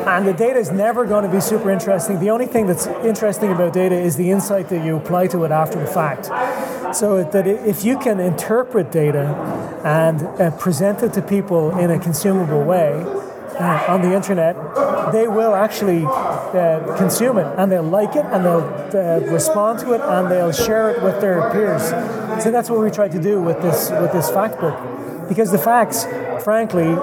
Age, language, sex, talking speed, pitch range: 30-49, English, male, 195 wpm, 175-215 Hz